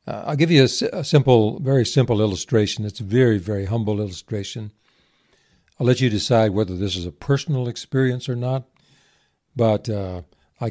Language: English